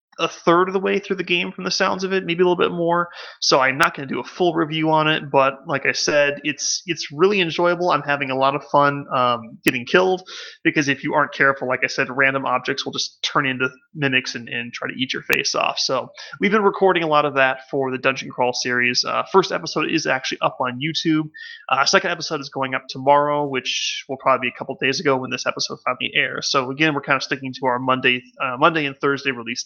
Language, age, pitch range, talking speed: English, 30-49, 135-175 Hz, 250 wpm